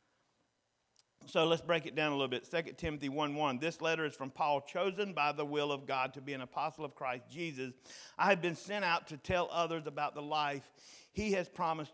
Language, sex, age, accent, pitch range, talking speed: English, male, 50-69, American, 125-150 Hz, 215 wpm